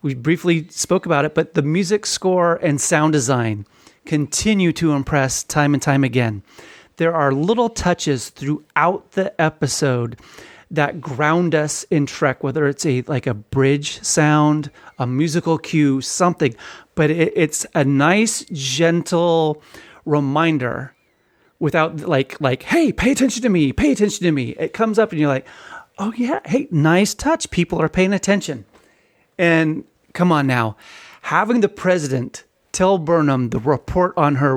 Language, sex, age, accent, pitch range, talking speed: English, male, 30-49, American, 140-180 Hz, 155 wpm